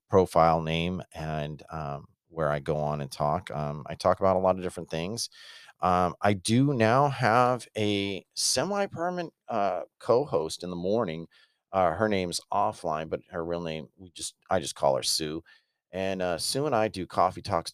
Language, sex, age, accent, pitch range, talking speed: English, male, 40-59, American, 80-100 Hz, 185 wpm